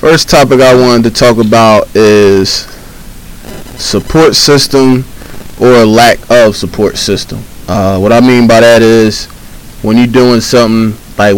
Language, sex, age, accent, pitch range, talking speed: English, male, 20-39, American, 105-130 Hz, 140 wpm